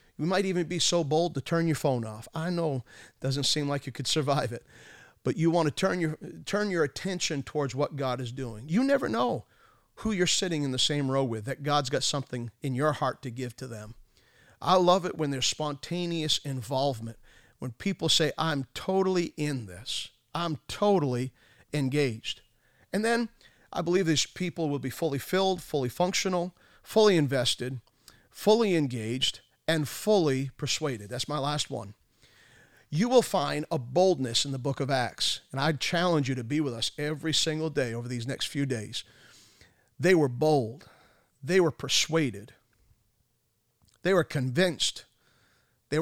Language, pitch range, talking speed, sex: English, 125-165 Hz, 175 wpm, male